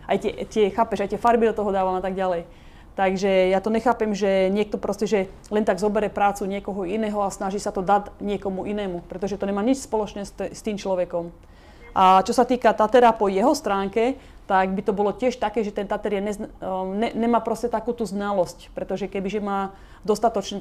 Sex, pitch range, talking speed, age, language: female, 195-215 Hz, 205 wpm, 30-49, Slovak